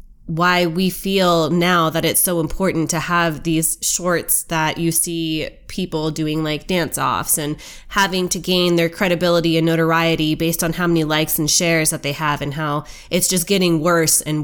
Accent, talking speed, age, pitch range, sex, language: American, 185 wpm, 20-39, 160-185 Hz, female, English